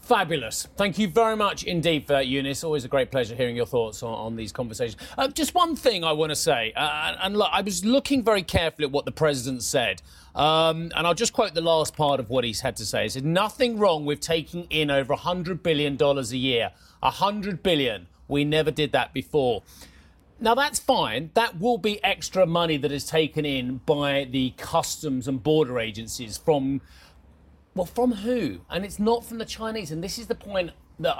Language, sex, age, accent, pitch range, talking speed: English, male, 30-49, British, 130-185 Hz, 210 wpm